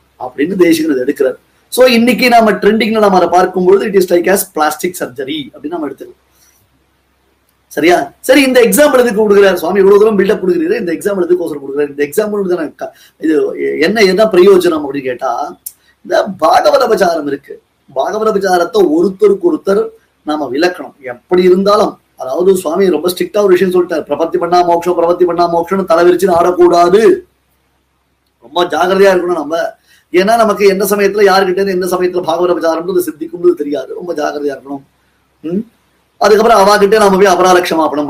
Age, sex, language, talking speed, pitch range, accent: 30-49, male, Tamil, 50 wpm, 170-220 Hz, native